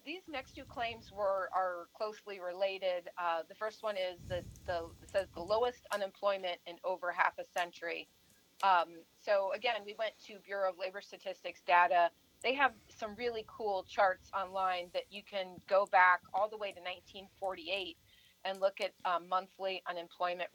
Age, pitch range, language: 30-49, 175-205 Hz, English